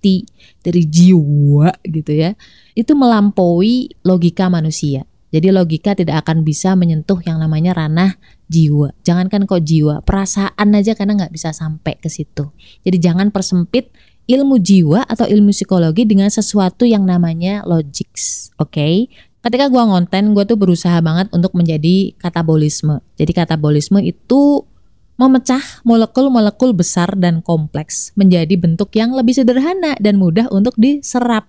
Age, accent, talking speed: 20-39, native, 135 wpm